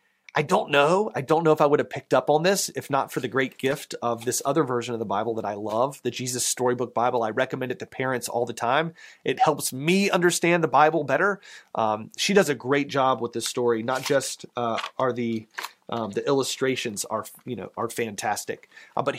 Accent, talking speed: American, 230 wpm